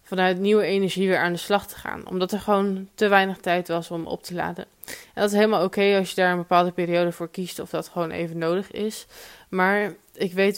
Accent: Dutch